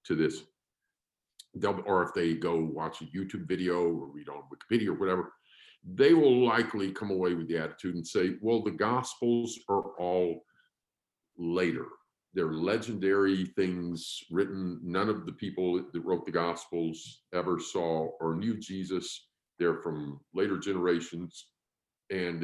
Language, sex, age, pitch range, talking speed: English, male, 50-69, 85-115 Hz, 145 wpm